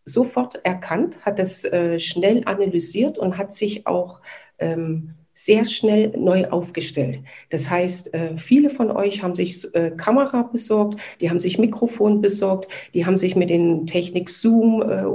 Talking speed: 160 wpm